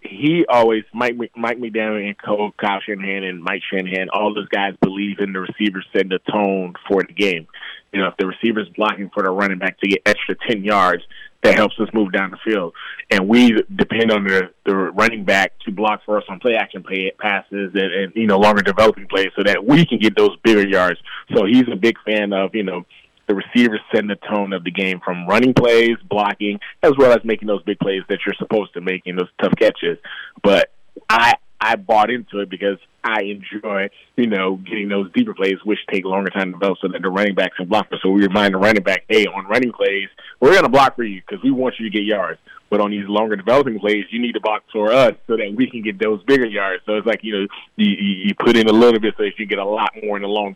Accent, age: American, 20-39